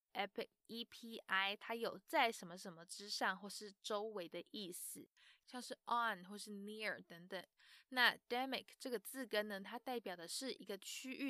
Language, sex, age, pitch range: Chinese, female, 20-39, 190-250 Hz